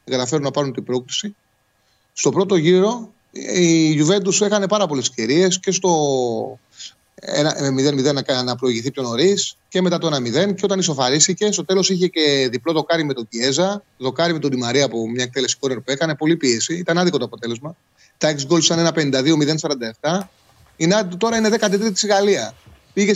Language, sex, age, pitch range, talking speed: Greek, male, 30-49, 135-185 Hz, 170 wpm